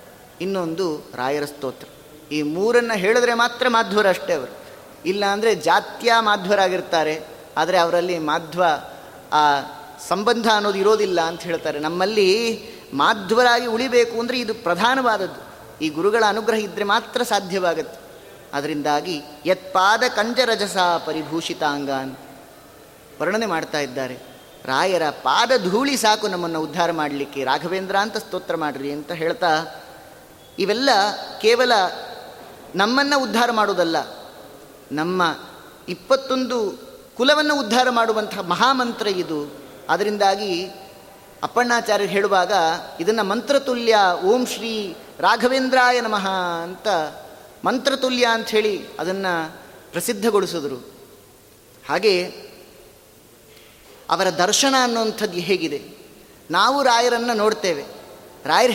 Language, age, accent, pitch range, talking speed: Kannada, 20-39, native, 165-230 Hz, 90 wpm